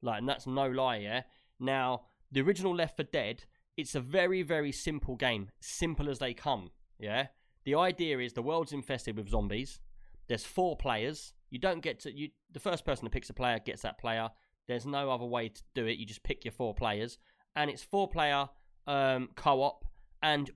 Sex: male